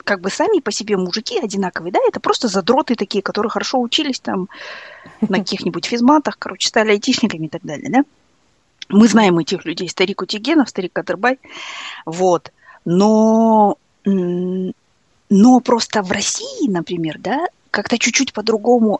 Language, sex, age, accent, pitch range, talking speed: Russian, female, 20-39, native, 180-240 Hz, 140 wpm